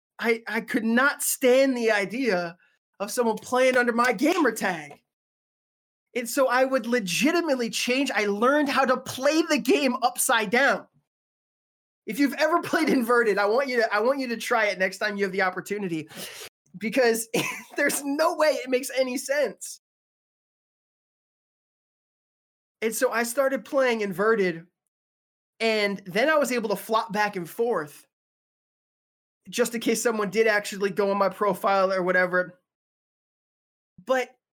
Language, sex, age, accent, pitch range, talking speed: English, male, 20-39, American, 210-270 Hz, 150 wpm